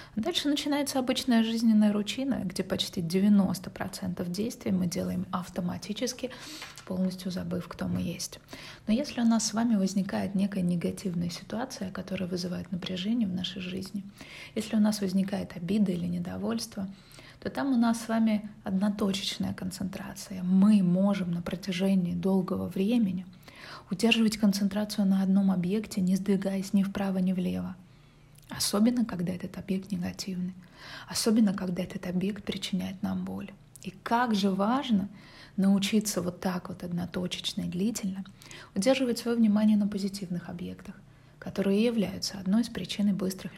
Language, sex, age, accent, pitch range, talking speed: Russian, female, 30-49, native, 185-210 Hz, 140 wpm